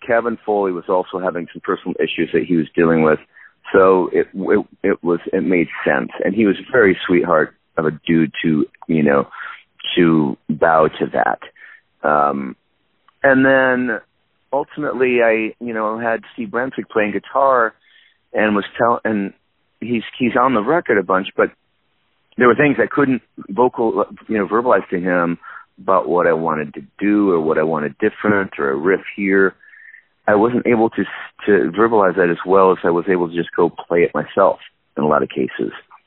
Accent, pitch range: American, 85-120 Hz